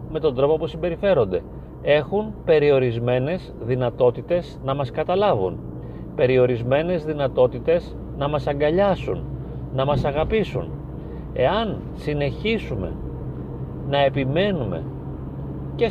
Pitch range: 115-155 Hz